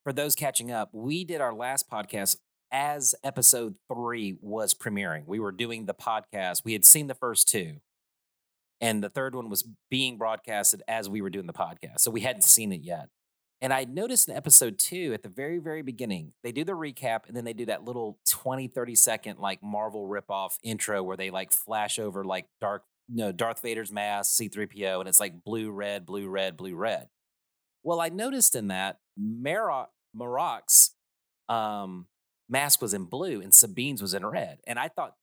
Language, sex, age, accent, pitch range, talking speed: English, male, 30-49, American, 100-130 Hz, 190 wpm